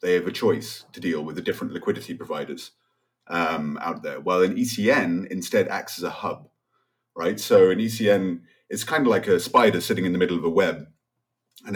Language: English